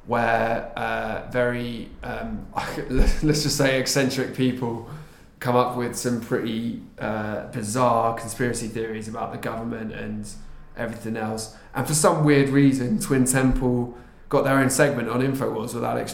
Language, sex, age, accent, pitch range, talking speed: English, male, 20-39, British, 115-135 Hz, 145 wpm